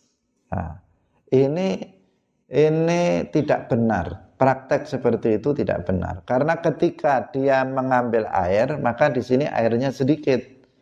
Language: Indonesian